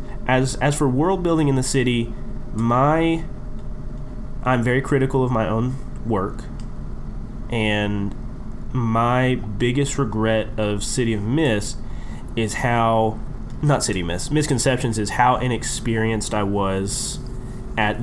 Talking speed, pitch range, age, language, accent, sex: 125 wpm, 110-130 Hz, 30-49, English, American, male